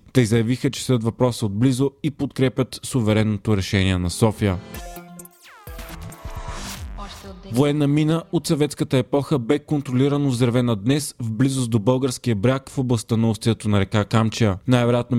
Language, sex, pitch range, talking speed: Bulgarian, male, 110-140 Hz, 125 wpm